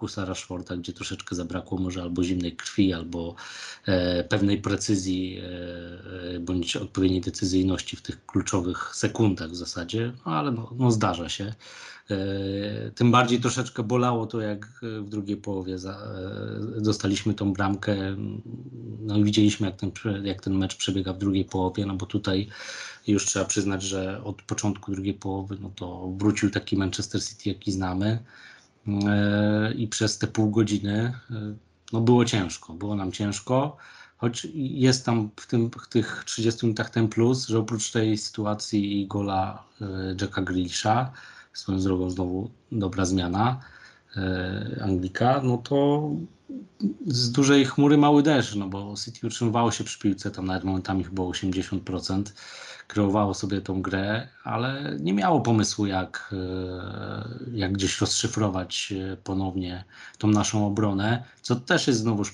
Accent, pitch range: native, 95-110 Hz